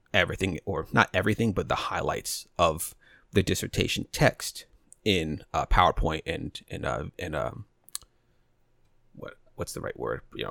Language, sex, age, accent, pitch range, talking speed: English, male, 30-49, American, 90-105 Hz, 150 wpm